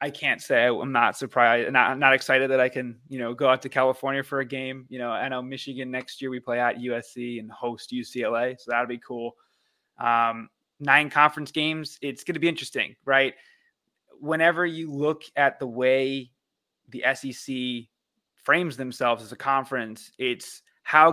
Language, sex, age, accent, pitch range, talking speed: English, male, 20-39, American, 120-145 Hz, 185 wpm